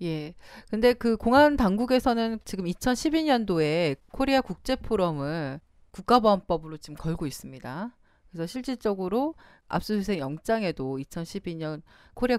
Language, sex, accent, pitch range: Korean, female, native, 155-235 Hz